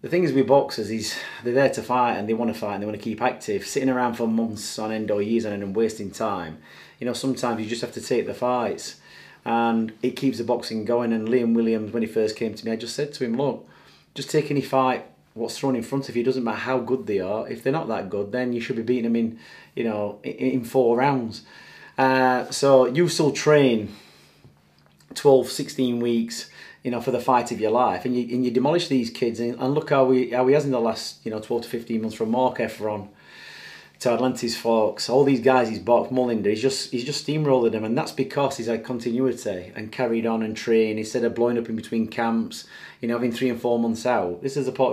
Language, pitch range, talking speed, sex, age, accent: English, 110-130 Hz, 250 wpm, male, 30-49, British